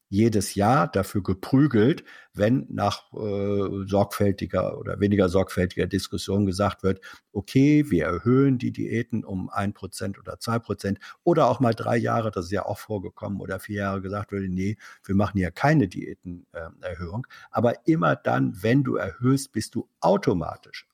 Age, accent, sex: 50-69, German, male